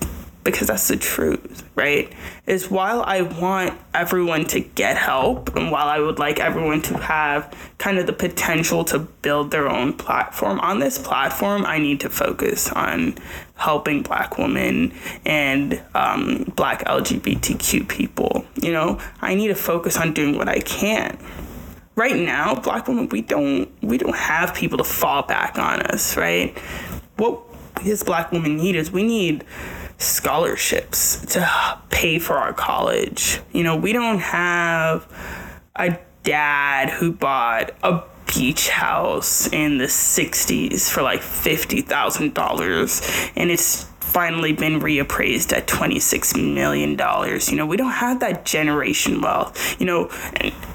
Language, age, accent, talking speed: English, 20-39, American, 145 wpm